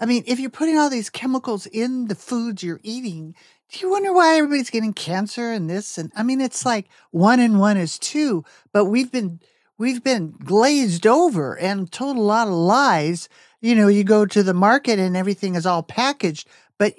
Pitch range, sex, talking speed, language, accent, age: 175-235 Hz, male, 205 wpm, English, American, 50-69